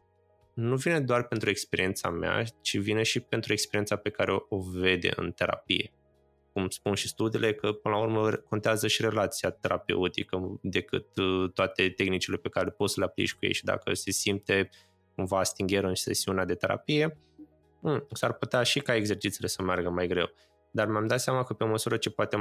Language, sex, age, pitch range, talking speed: Romanian, male, 20-39, 95-115 Hz, 185 wpm